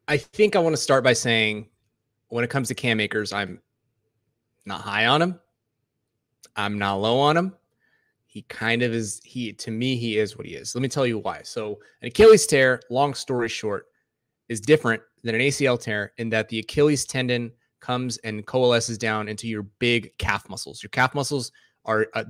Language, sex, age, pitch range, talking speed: English, male, 20-39, 110-130 Hz, 195 wpm